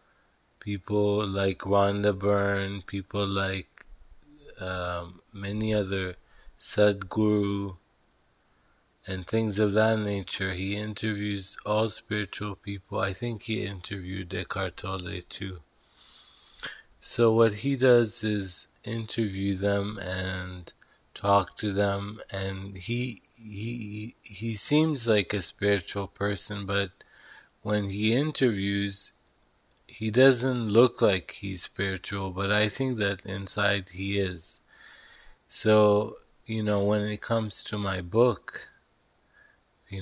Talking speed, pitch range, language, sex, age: 110 wpm, 95-105 Hz, English, male, 20-39